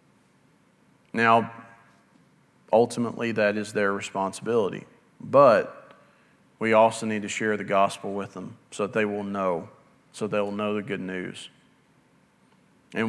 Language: English